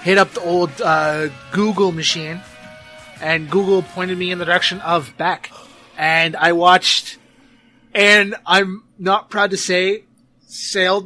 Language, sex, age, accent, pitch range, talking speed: English, male, 20-39, American, 160-200 Hz, 140 wpm